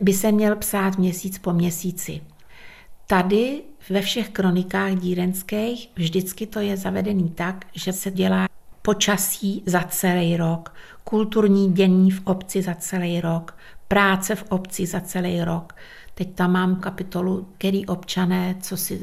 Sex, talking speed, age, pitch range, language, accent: female, 140 wpm, 60-79, 180-205 Hz, Czech, native